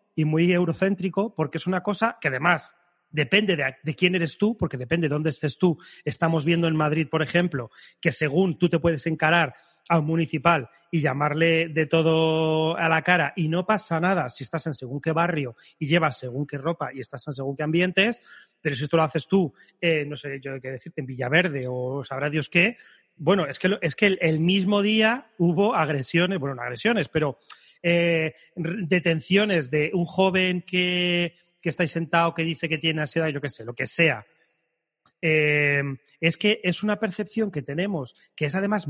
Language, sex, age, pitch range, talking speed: Spanish, male, 30-49, 150-185 Hz, 200 wpm